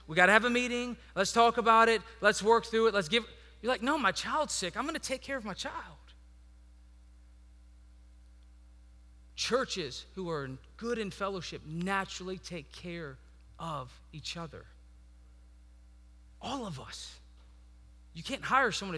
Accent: American